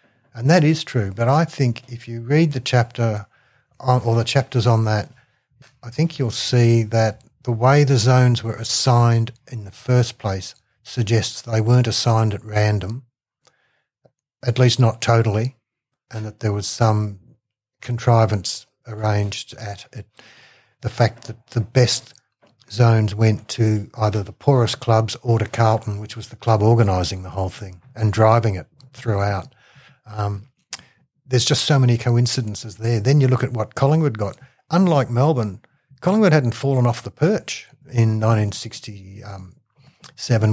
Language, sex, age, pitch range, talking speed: English, male, 60-79, 110-130 Hz, 150 wpm